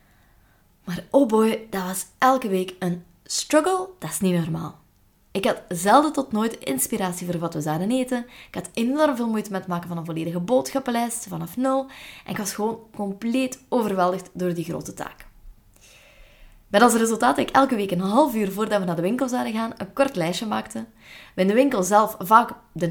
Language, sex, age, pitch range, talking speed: Dutch, female, 20-39, 180-235 Hz, 200 wpm